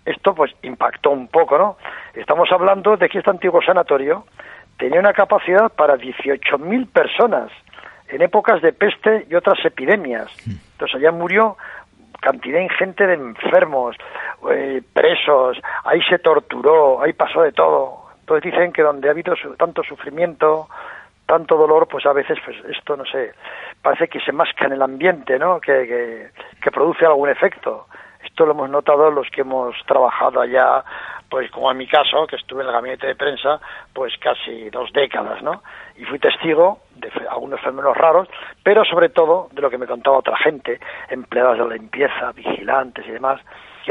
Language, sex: Spanish, male